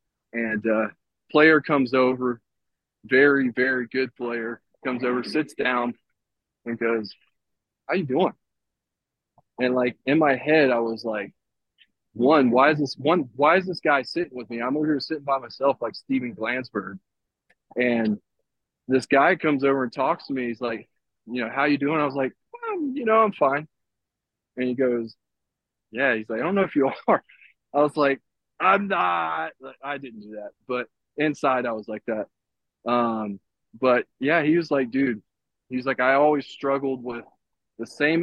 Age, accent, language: 20-39, American, English